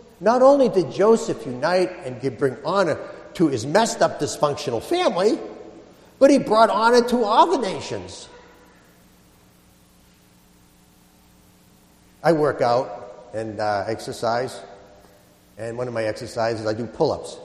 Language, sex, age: English, male, 50-69